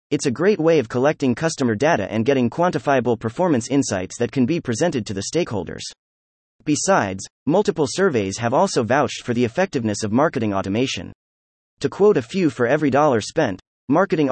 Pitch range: 105-160 Hz